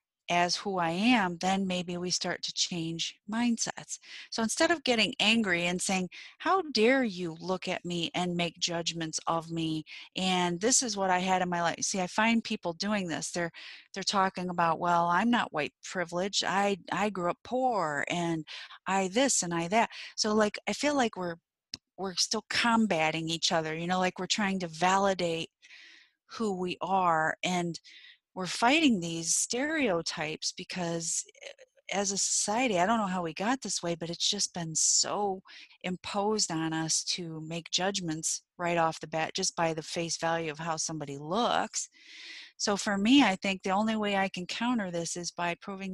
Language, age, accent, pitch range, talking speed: English, 40-59, American, 170-210 Hz, 185 wpm